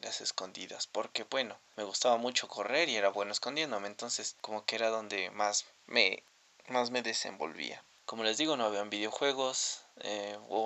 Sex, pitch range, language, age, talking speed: male, 105-125 Hz, Spanish, 20-39, 160 wpm